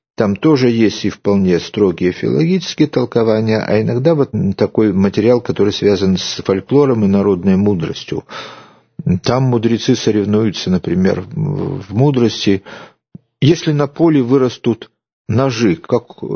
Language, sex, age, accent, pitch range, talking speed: Russian, male, 50-69, native, 100-140 Hz, 115 wpm